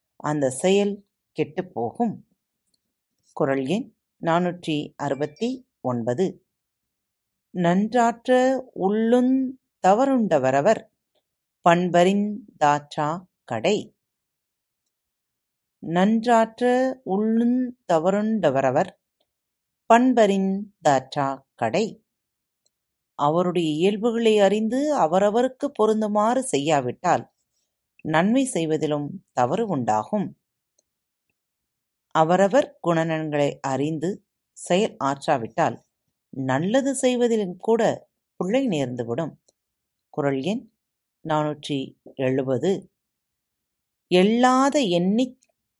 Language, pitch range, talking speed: Tamil, 150-230 Hz, 50 wpm